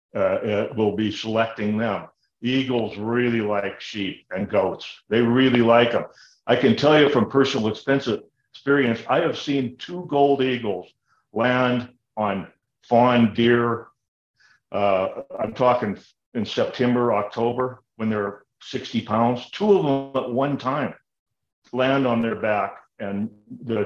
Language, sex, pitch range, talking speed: English, male, 105-125 Hz, 135 wpm